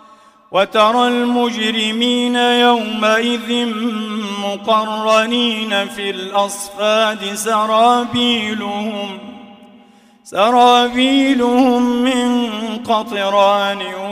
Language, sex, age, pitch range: Arabic, male, 40-59, 215-245 Hz